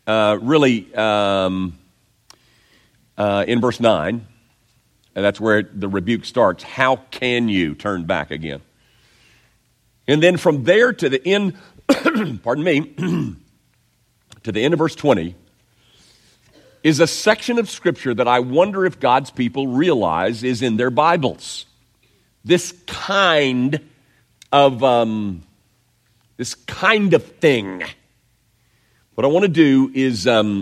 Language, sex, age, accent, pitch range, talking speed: English, male, 50-69, American, 105-135 Hz, 125 wpm